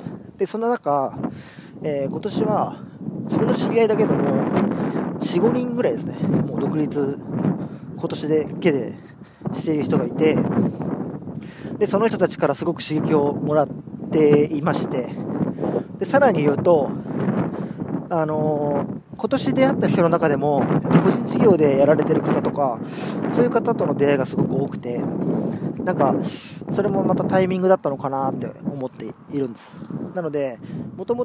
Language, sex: Japanese, male